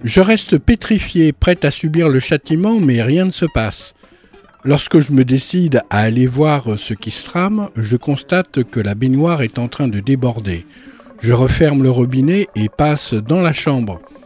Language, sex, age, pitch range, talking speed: French, male, 50-69, 115-160 Hz, 180 wpm